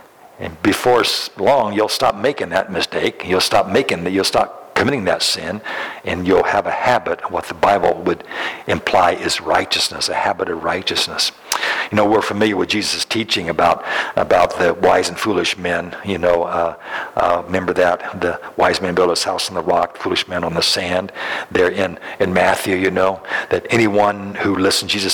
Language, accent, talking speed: English, American, 190 wpm